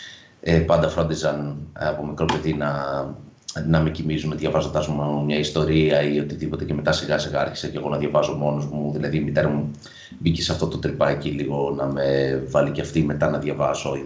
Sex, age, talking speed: male, 30-49, 245 wpm